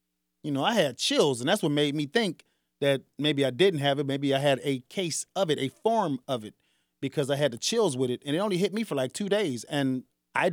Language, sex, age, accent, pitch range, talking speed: English, male, 30-49, American, 120-195 Hz, 260 wpm